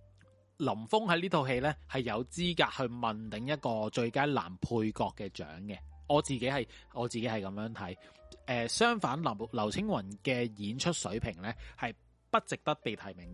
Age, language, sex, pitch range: 30-49, Chinese, male, 105-160 Hz